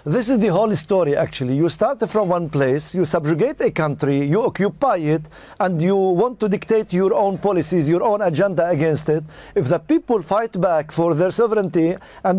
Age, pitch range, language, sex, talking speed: 50-69, 180-220 Hz, English, male, 195 wpm